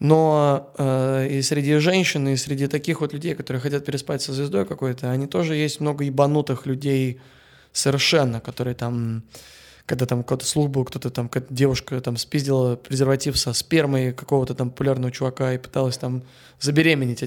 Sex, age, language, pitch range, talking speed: male, 20-39, Russian, 130-155 Hz, 155 wpm